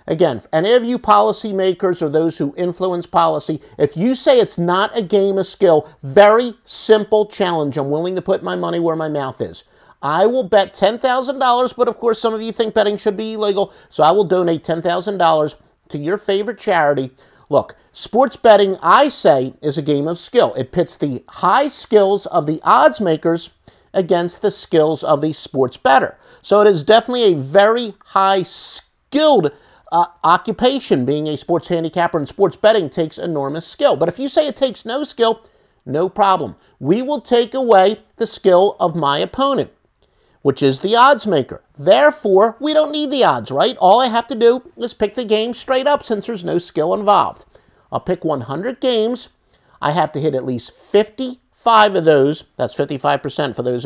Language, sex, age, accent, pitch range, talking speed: English, male, 50-69, American, 155-230 Hz, 185 wpm